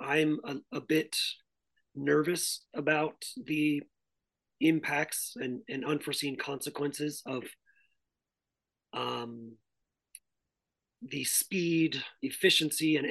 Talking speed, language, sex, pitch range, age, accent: 80 wpm, English, male, 130-155 Hz, 30-49, American